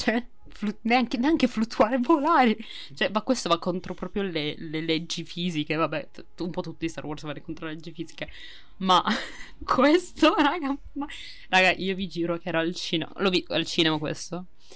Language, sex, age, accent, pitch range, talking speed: Italian, female, 20-39, native, 160-225 Hz, 190 wpm